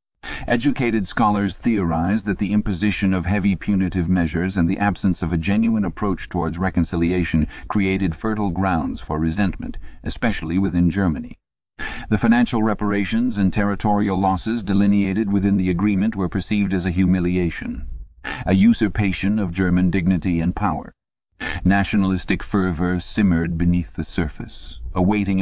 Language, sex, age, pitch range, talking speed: English, male, 50-69, 85-105 Hz, 130 wpm